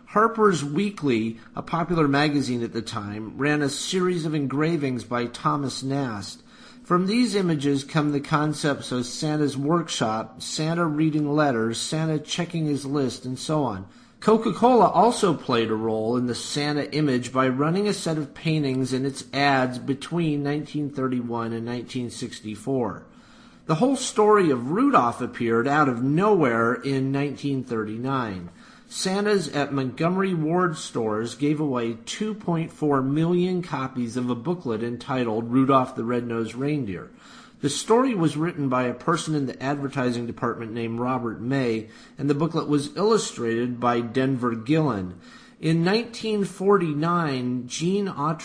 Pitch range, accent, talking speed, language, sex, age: 125-165 Hz, American, 135 wpm, English, male, 50-69